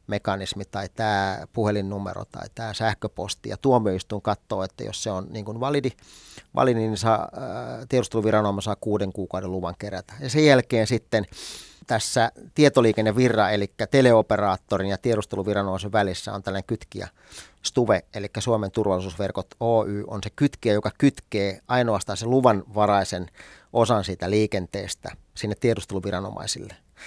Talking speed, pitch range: 125 wpm, 100-115 Hz